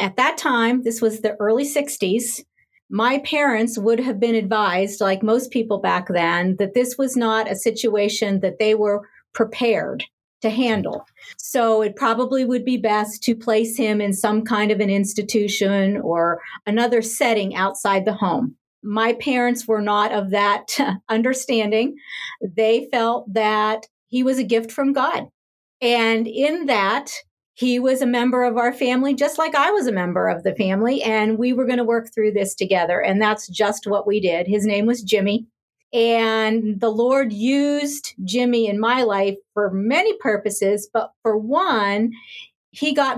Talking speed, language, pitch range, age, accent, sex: 170 wpm, English, 210-245 Hz, 50-69, American, female